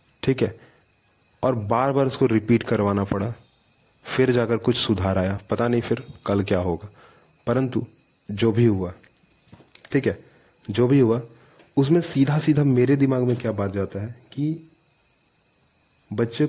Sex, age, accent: male, 30-49, native